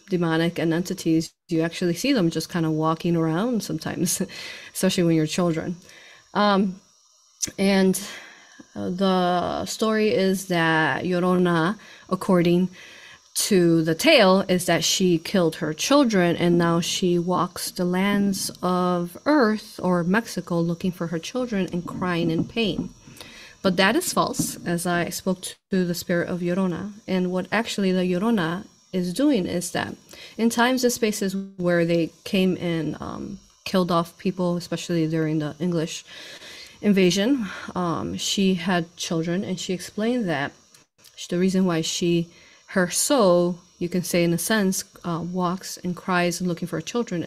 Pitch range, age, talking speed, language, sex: 170-195 Hz, 30-49, 150 wpm, English, female